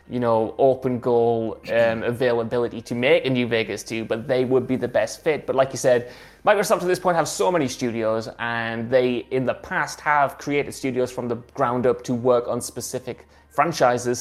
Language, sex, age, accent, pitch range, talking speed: English, male, 20-39, British, 115-140 Hz, 205 wpm